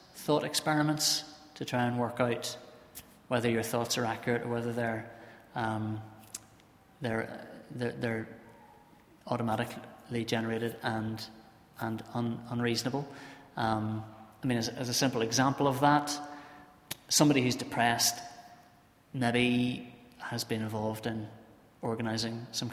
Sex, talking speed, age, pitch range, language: male, 115 wpm, 30-49, 115-130 Hz, English